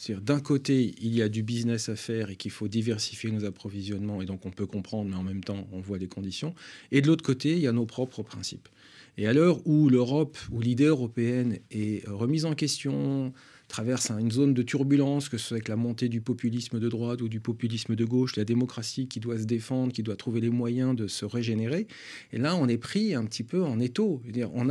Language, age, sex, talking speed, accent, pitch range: French, 40-59, male, 235 wpm, French, 110-145 Hz